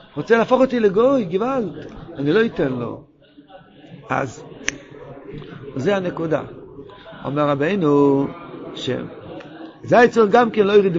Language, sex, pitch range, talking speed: Hebrew, male, 150-210 Hz, 115 wpm